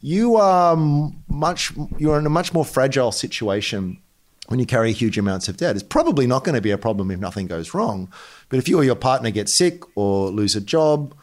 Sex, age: male, 30-49